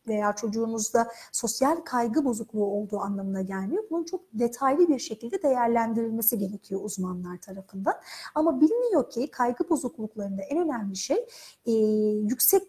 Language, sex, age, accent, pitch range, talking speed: Turkish, female, 40-59, native, 215-315 Hz, 130 wpm